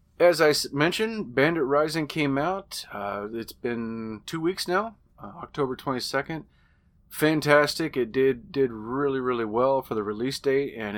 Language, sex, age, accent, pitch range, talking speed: English, male, 30-49, American, 110-140 Hz, 155 wpm